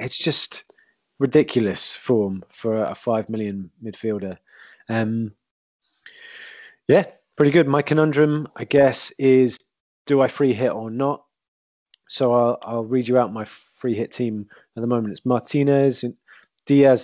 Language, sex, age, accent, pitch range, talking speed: English, male, 20-39, British, 100-125 Hz, 140 wpm